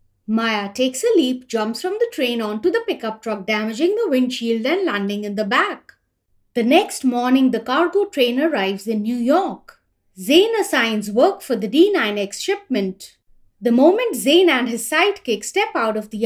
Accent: Indian